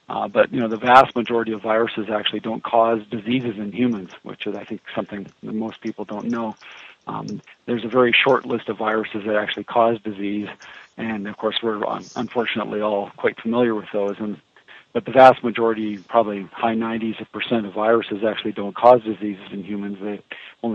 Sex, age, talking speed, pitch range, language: male, 40-59, 195 wpm, 105-120 Hz, English